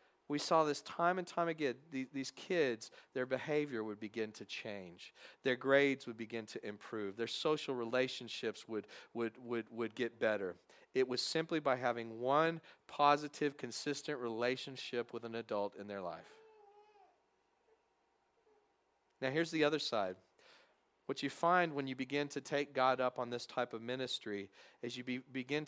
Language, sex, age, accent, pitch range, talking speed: English, male, 40-59, American, 125-165 Hz, 160 wpm